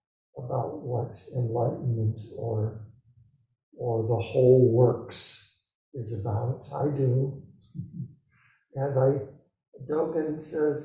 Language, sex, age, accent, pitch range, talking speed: English, male, 60-79, American, 115-155 Hz, 90 wpm